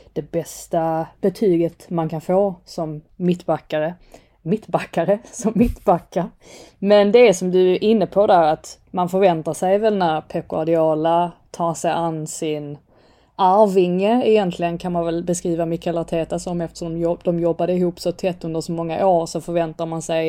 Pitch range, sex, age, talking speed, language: 165-195 Hz, female, 20-39, 165 wpm, English